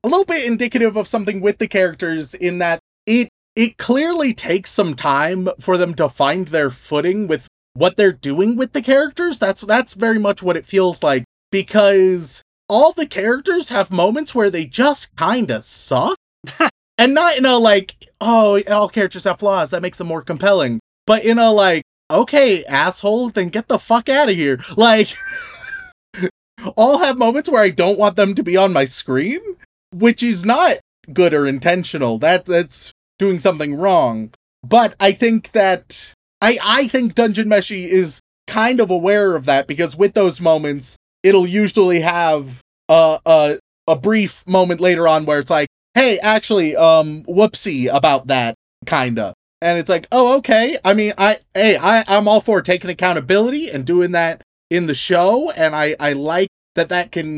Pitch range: 170-225 Hz